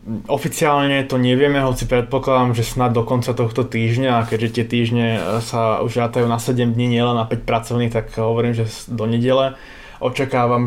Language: Slovak